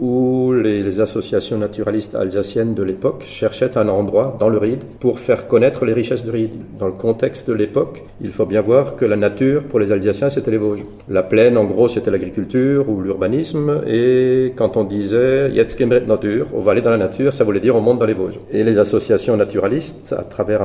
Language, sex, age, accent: French, male, 50-69, French